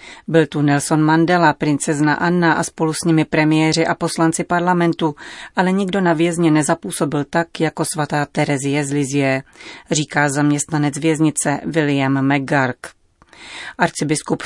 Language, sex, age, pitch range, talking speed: Czech, female, 30-49, 150-170 Hz, 130 wpm